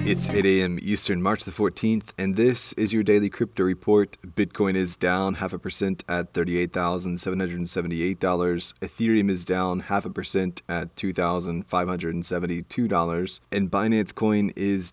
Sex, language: male, English